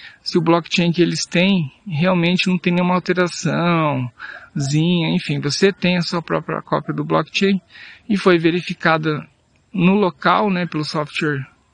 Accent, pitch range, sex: Brazilian, 155-185 Hz, male